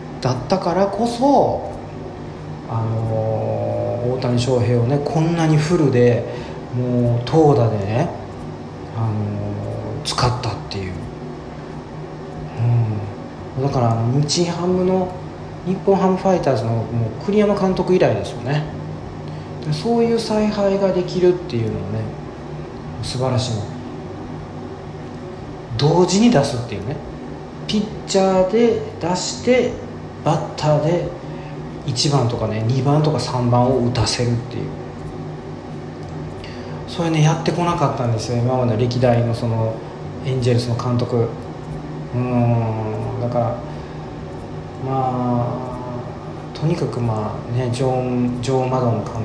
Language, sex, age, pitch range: Japanese, male, 40-59, 110-155 Hz